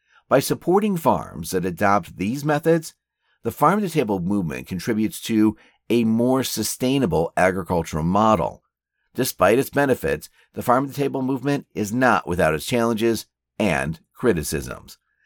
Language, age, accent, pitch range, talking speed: English, 50-69, American, 90-140 Hz, 120 wpm